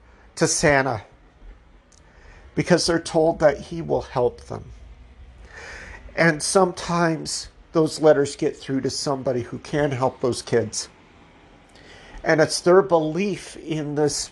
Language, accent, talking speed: English, American, 120 wpm